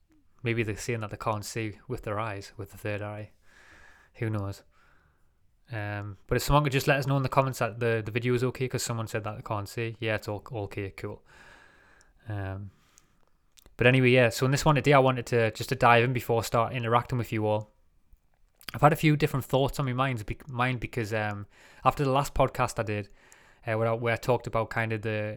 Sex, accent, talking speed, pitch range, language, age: male, British, 230 wpm, 105-125 Hz, English, 20-39